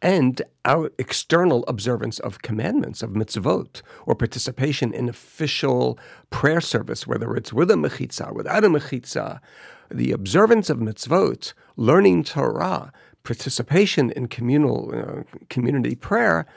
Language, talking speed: English, 125 wpm